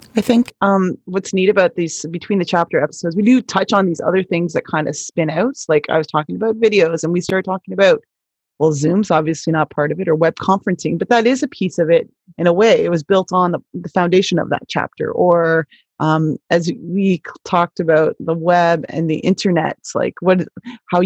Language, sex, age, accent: English, female, 30-49, American